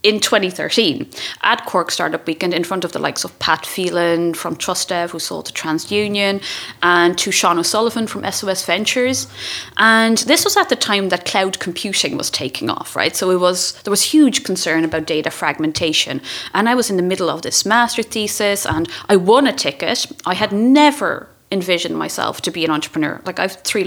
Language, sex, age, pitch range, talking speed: English, female, 30-49, 170-220 Hz, 195 wpm